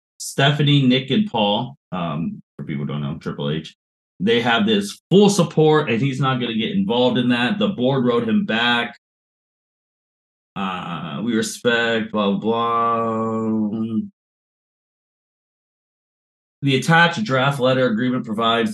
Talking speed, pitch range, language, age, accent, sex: 140 wpm, 115-190 Hz, English, 30-49, American, male